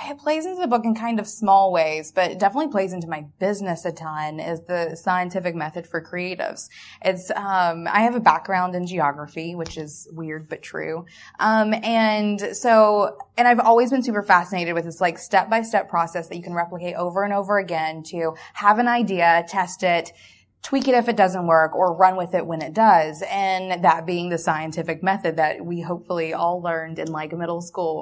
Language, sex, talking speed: English, female, 200 wpm